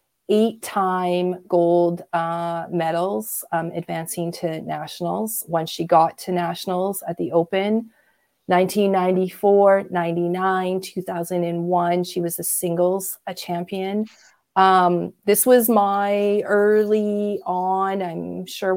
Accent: American